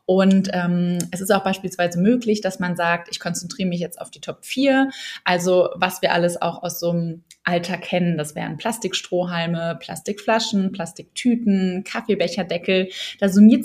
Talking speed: 160 wpm